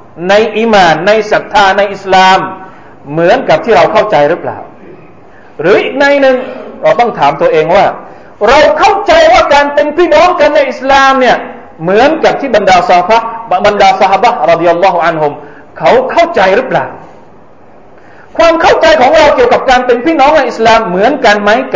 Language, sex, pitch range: Thai, male, 190-320 Hz